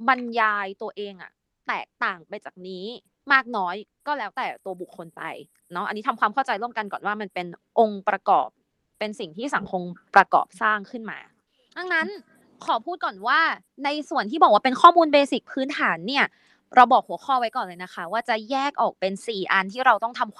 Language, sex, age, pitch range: Thai, female, 20-39, 195-265 Hz